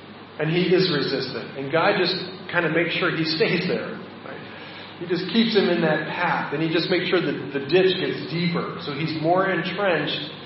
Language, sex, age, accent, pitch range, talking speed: English, male, 40-59, American, 140-180 Hz, 205 wpm